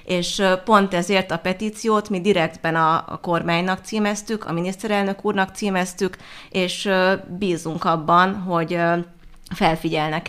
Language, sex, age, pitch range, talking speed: Hungarian, female, 30-49, 165-195 Hz, 110 wpm